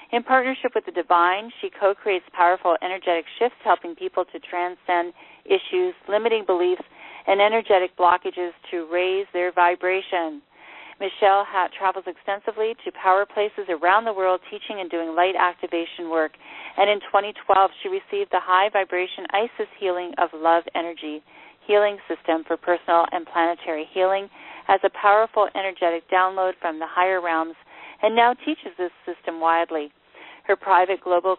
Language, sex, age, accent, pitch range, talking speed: English, female, 40-59, American, 175-205 Hz, 145 wpm